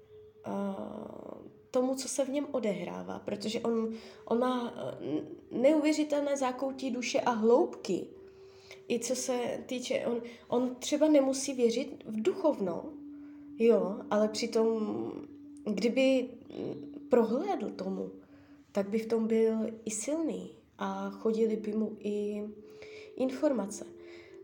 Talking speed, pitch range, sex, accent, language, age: 110 wpm, 220-295 Hz, female, native, Czech, 20-39